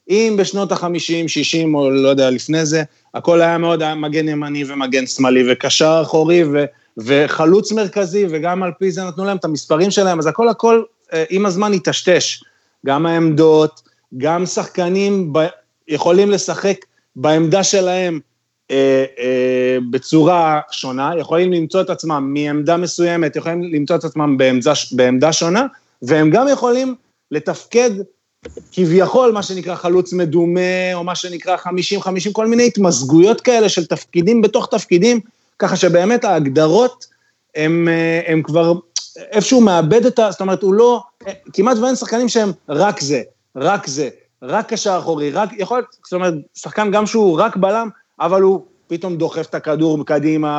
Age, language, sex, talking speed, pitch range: 30-49, Hebrew, male, 145 wpm, 155-200 Hz